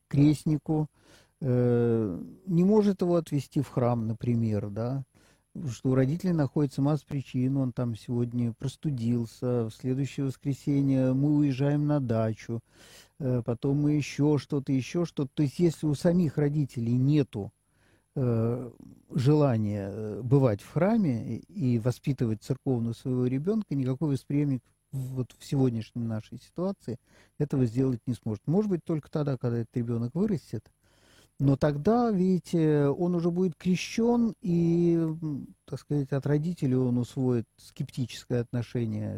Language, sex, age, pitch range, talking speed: Russian, male, 50-69, 120-150 Hz, 125 wpm